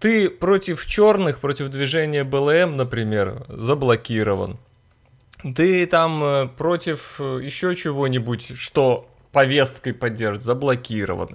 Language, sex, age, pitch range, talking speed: Russian, male, 20-39, 125-180 Hz, 90 wpm